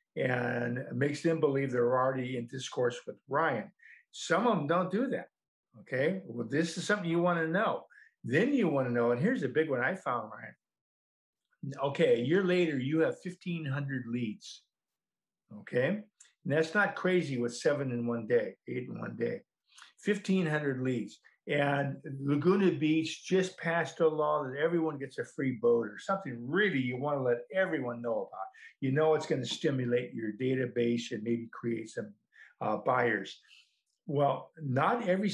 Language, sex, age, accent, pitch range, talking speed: English, male, 50-69, American, 130-180 Hz, 175 wpm